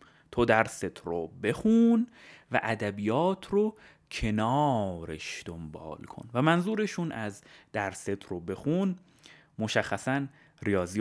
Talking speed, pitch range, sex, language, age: 100 wpm, 95-155 Hz, male, Persian, 30-49